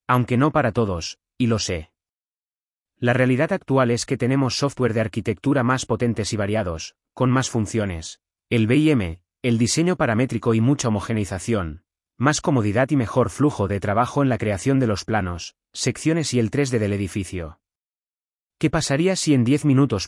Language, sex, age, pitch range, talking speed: Spanish, male, 30-49, 100-135 Hz, 165 wpm